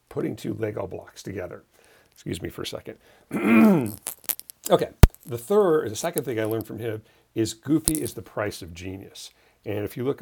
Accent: American